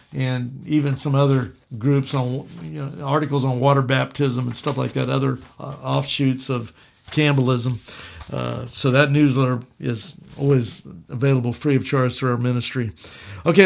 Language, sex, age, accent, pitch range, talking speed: English, male, 50-69, American, 130-150 Hz, 155 wpm